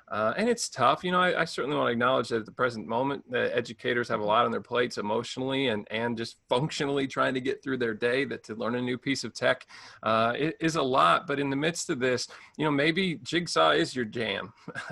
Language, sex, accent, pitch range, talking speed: English, male, American, 120-155 Hz, 245 wpm